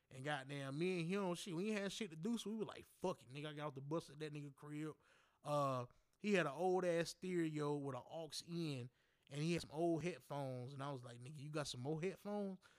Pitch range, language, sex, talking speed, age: 135-175 Hz, English, male, 255 wpm, 20-39